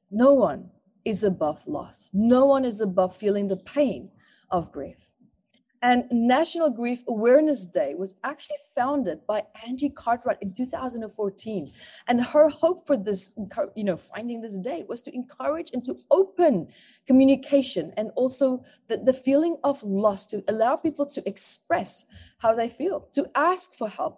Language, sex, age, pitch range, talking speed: English, female, 20-39, 210-285 Hz, 155 wpm